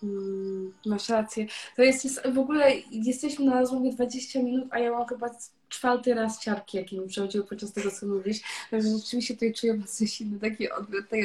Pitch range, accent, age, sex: 205-245 Hz, native, 20-39, female